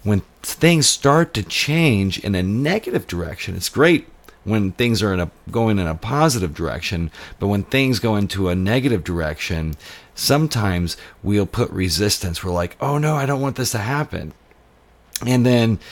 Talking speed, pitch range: 170 wpm, 90-120 Hz